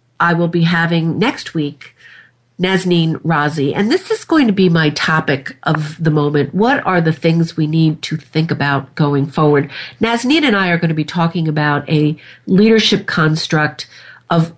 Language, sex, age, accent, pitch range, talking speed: English, female, 50-69, American, 150-185 Hz, 175 wpm